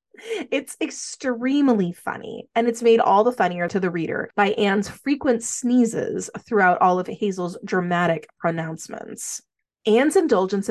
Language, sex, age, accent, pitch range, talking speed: English, female, 30-49, American, 195-260 Hz, 135 wpm